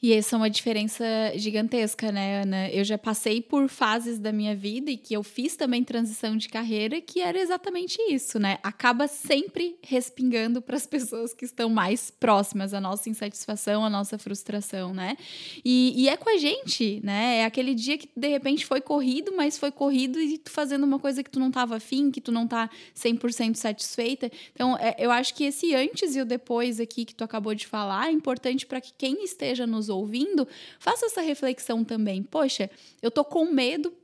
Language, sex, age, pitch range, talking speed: Portuguese, female, 10-29, 220-280 Hz, 195 wpm